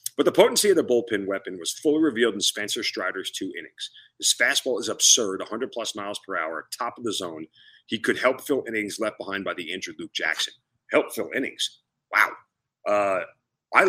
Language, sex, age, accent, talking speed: English, male, 40-59, American, 195 wpm